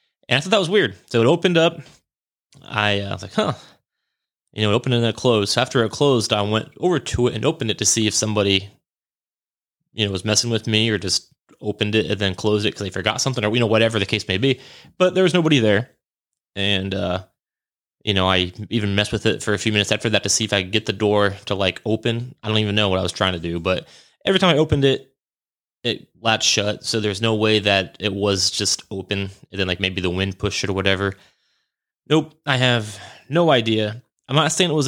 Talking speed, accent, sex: 250 wpm, American, male